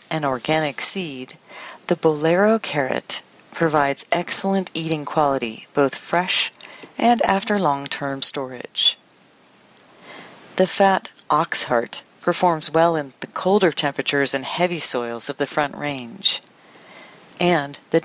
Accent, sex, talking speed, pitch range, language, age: American, female, 115 wpm, 140-180 Hz, English, 40-59